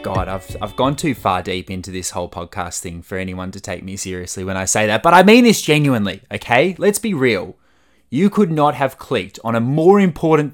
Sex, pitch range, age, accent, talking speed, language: male, 100-150 Hz, 20-39, Australian, 230 wpm, English